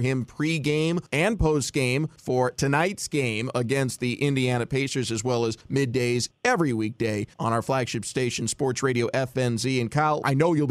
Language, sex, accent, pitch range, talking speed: English, male, American, 125-150 Hz, 165 wpm